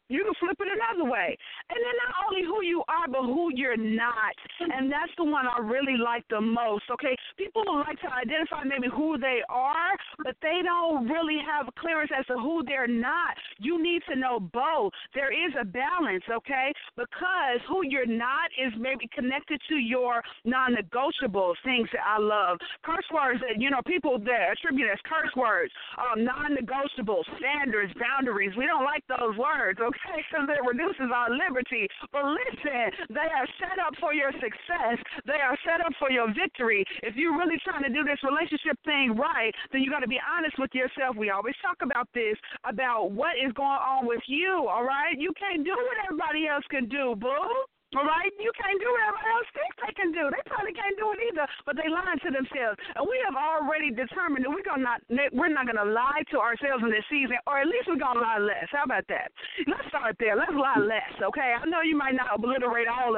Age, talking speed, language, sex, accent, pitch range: 50-69, 205 wpm, English, female, American, 250-335 Hz